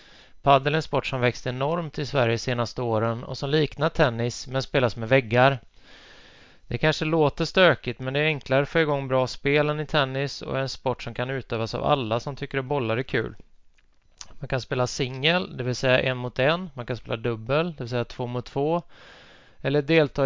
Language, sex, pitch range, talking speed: Swedish, male, 120-145 Hz, 215 wpm